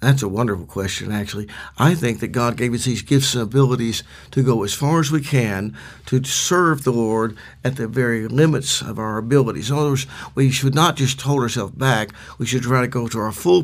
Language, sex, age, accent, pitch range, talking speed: English, male, 50-69, American, 115-140 Hz, 225 wpm